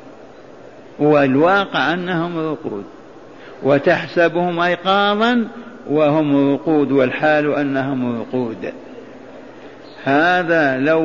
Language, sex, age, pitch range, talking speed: Arabic, male, 50-69, 155-195 Hz, 65 wpm